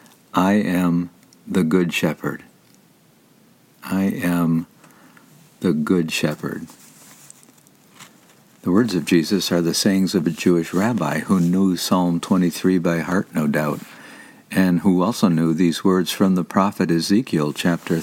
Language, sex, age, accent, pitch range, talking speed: English, male, 60-79, American, 85-95 Hz, 135 wpm